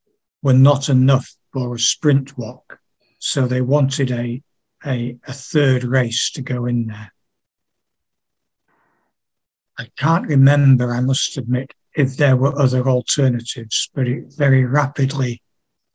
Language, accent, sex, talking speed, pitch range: English, British, male, 125 wpm, 125-145 Hz